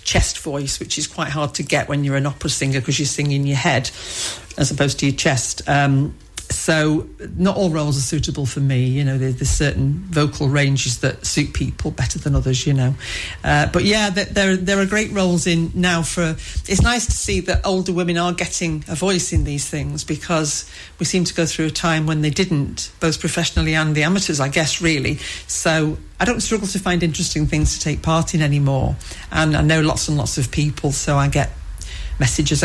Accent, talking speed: British, 215 wpm